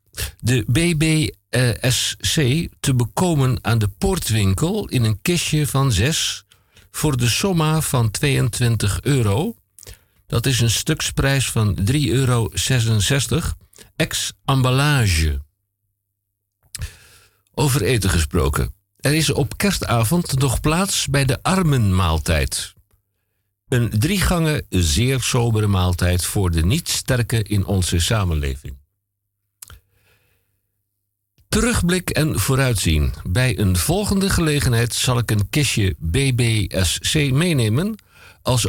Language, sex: Dutch, male